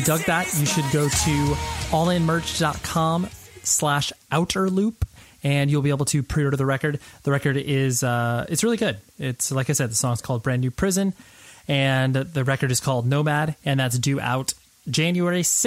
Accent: American